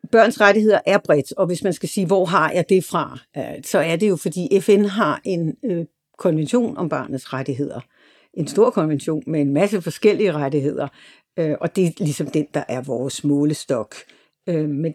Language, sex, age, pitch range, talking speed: Danish, female, 60-79, 155-200 Hz, 175 wpm